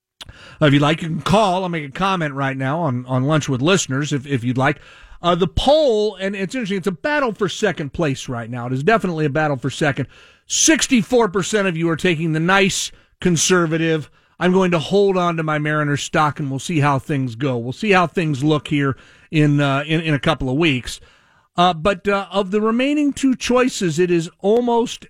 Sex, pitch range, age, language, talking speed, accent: male, 155-205 Hz, 50-69, English, 215 wpm, American